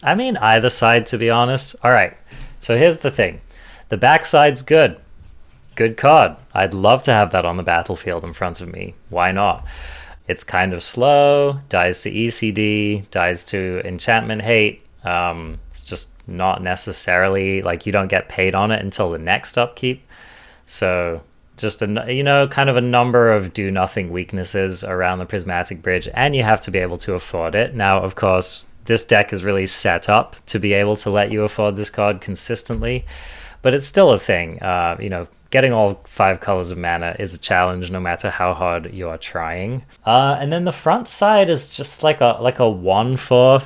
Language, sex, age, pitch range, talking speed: English, male, 30-49, 90-120 Hz, 190 wpm